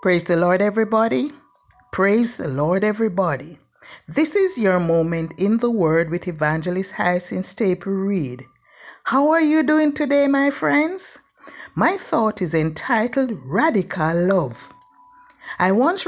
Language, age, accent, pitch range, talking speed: English, 60-79, Nigerian, 180-290 Hz, 130 wpm